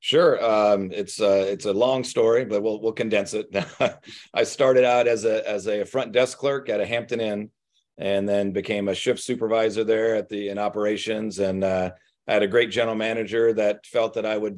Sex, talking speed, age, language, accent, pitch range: male, 210 wpm, 40-59, English, American, 100-115 Hz